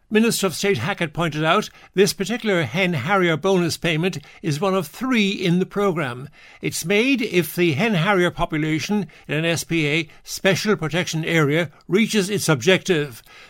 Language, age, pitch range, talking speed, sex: English, 60-79, 160-195 Hz, 145 wpm, male